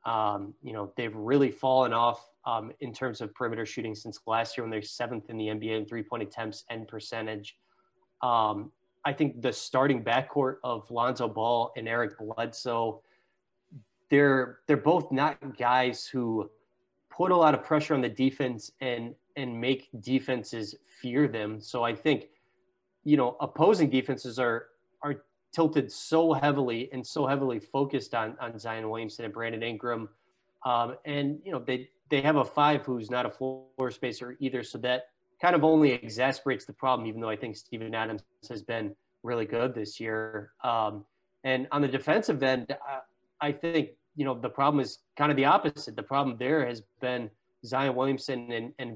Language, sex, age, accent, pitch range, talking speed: English, male, 20-39, American, 115-135 Hz, 175 wpm